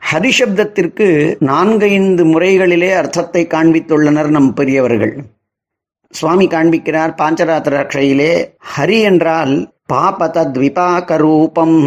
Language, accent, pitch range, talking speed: Tamil, native, 145-180 Hz, 70 wpm